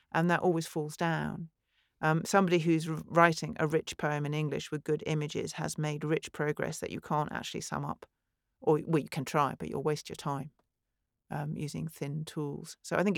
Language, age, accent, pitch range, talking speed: English, 40-59, British, 150-175 Hz, 200 wpm